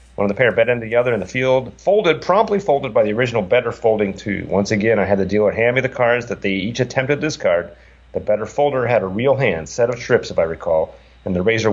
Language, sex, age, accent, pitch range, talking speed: English, male, 40-59, American, 95-120 Hz, 265 wpm